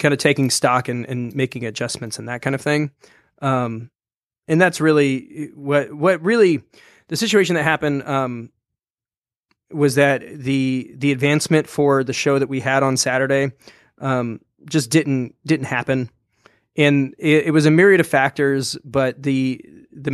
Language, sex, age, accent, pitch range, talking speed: English, male, 20-39, American, 125-150 Hz, 160 wpm